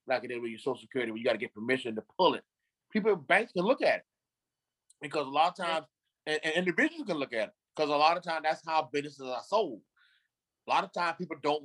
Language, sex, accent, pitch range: English, male, American, 145-195 Hz